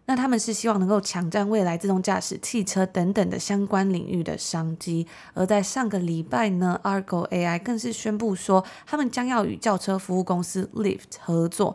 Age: 20-39